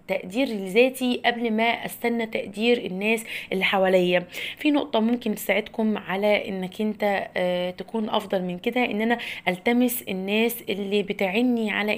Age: 20-39